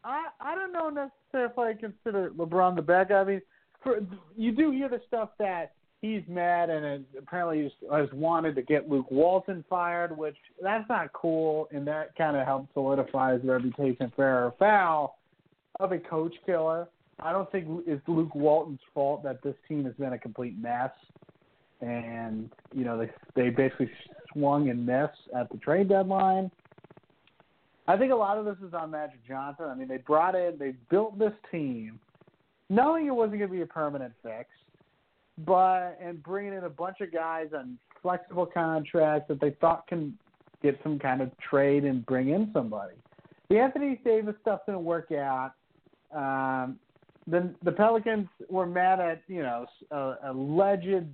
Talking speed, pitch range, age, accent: 175 wpm, 140-190 Hz, 40-59, American